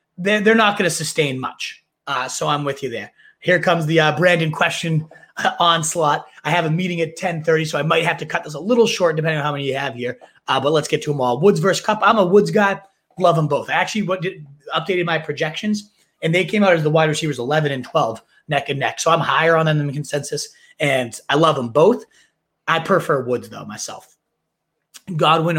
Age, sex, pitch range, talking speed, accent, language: 30-49, male, 150-190 Hz, 225 wpm, American, English